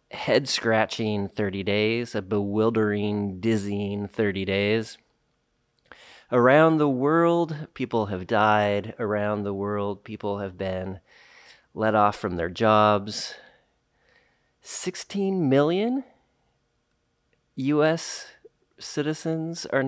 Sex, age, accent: male, 30-49, American